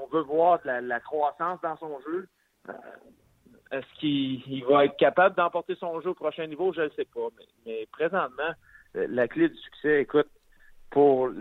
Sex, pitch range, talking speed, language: male, 125-160 Hz, 180 wpm, French